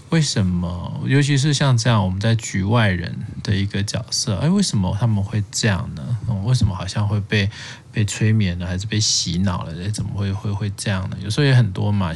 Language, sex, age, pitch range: Chinese, male, 20-39, 95-120 Hz